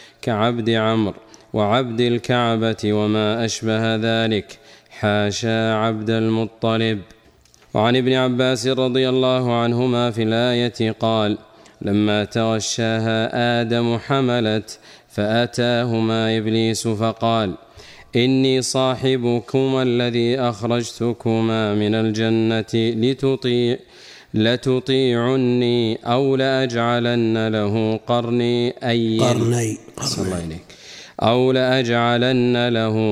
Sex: male